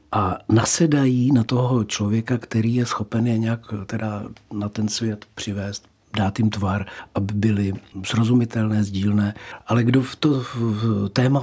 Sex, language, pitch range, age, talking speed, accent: male, Czech, 105-125 Hz, 60-79, 135 wpm, native